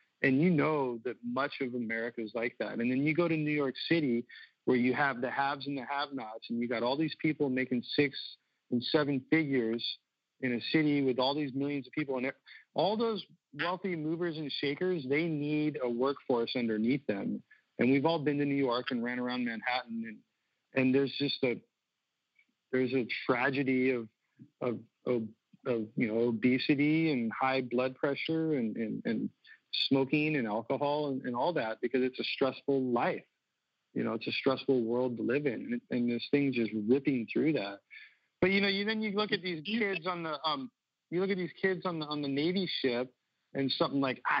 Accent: American